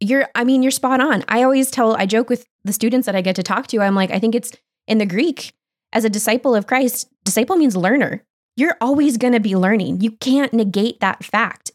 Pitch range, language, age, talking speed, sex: 190-245 Hz, English, 20-39, 240 wpm, female